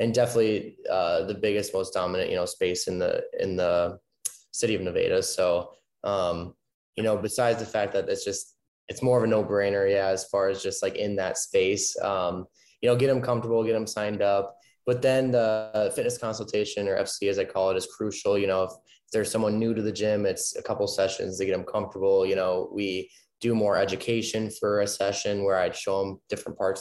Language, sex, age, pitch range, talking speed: English, male, 20-39, 95-115 Hz, 220 wpm